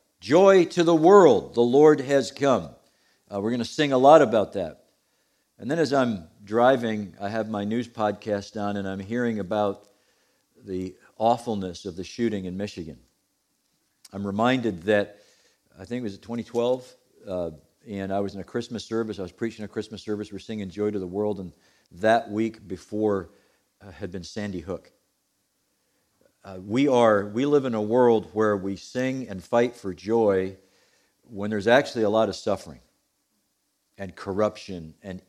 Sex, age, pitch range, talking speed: male, 50-69, 100-120 Hz, 170 wpm